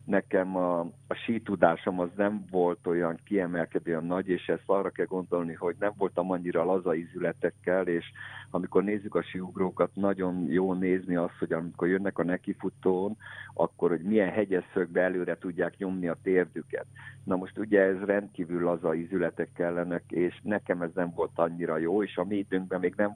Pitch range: 85-100 Hz